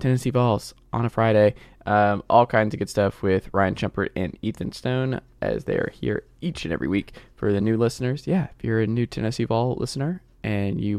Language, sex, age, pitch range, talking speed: English, male, 20-39, 105-120 Hz, 215 wpm